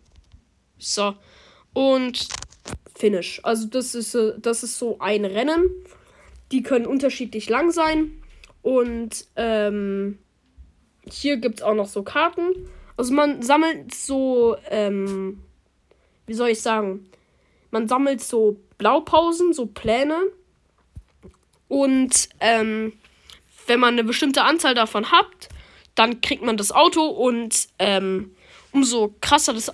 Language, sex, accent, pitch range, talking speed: German, female, German, 210-270 Hz, 115 wpm